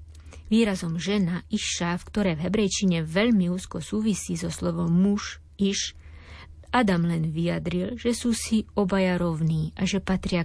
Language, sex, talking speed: Slovak, female, 140 wpm